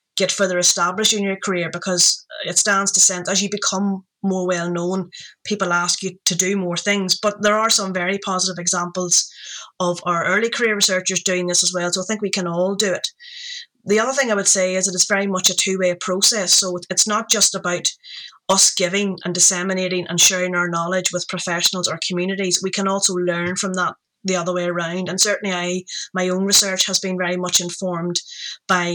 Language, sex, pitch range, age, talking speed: English, female, 180-200 Hz, 30-49, 210 wpm